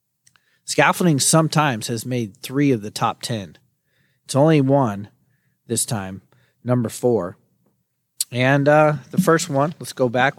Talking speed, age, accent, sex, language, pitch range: 140 wpm, 40-59, American, male, English, 115-150 Hz